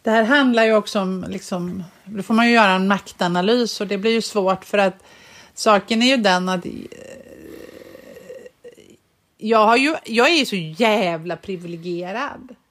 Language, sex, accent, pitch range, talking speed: Swedish, female, native, 185-245 Hz, 165 wpm